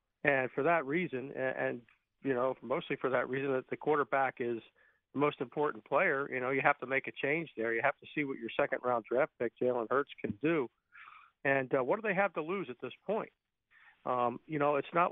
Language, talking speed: English, 230 wpm